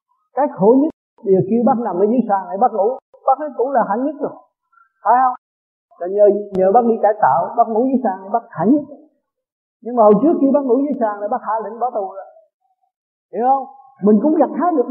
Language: Vietnamese